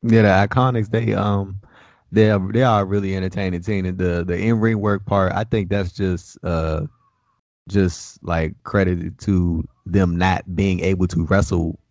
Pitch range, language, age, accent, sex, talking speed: 85-95 Hz, English, 20-39, American, male, 175 wpm